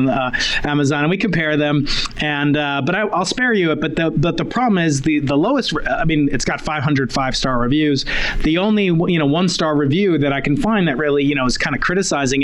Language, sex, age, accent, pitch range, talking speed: English, male, 30-49, American, 135-175 Hz, 255 wpm